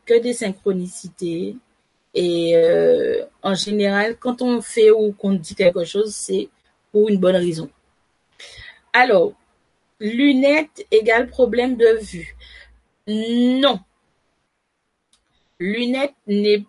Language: French